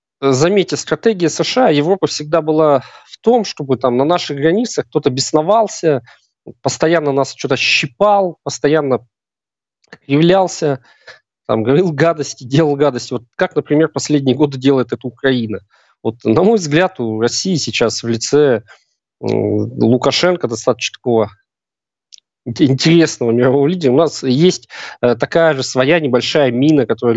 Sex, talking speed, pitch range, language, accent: male, 130 wpm, 125-165 Hz, Russian, native